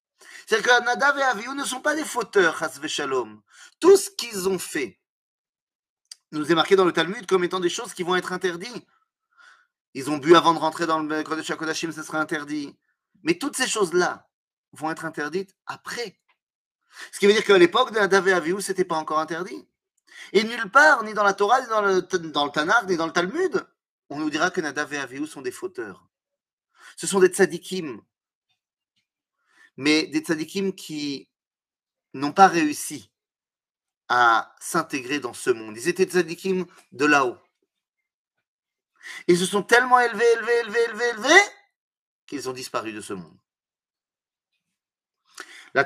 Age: 30-49